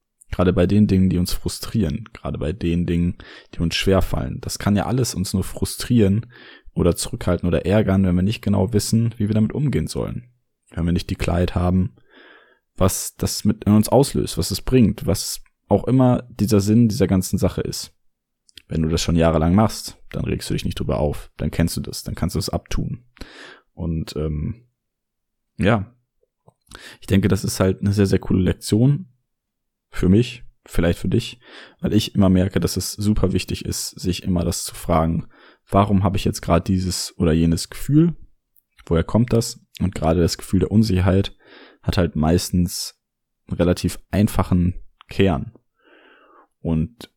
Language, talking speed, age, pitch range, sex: German, 175 wpm, 20-39, 85-110 Hz, male